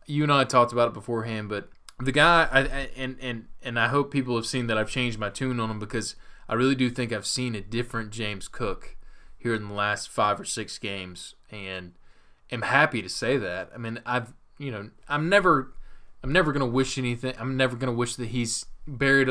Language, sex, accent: English, male, American